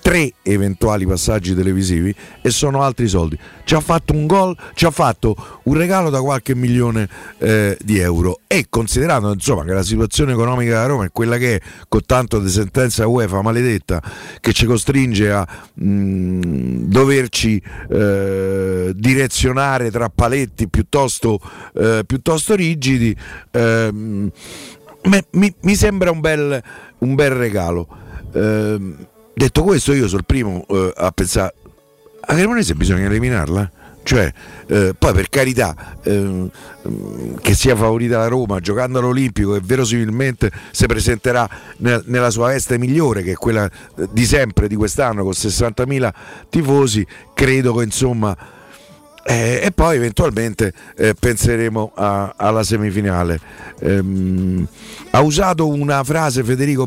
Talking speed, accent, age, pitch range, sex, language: 135 wpm, native, 50-69, 100-130 Hz, male, Italian